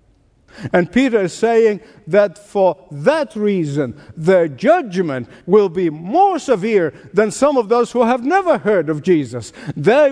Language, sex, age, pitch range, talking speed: English, male, 60-79, 140-205 Hz, 150 wpm